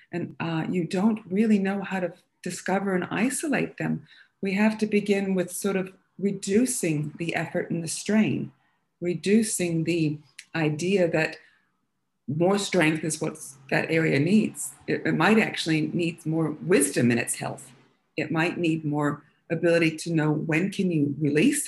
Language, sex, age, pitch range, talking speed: English, female, 50-69, 150-195 Hz, 160 wpm